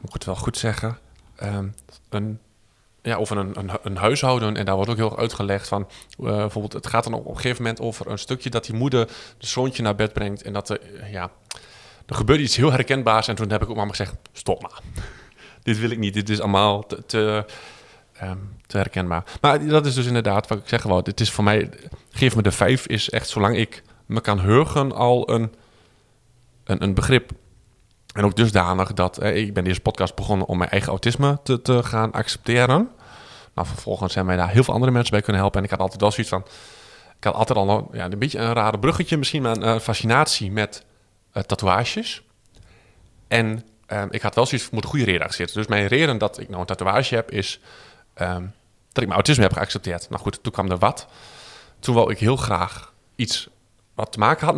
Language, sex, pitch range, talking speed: Dutch, male, 100-120 Hz, 225 wpm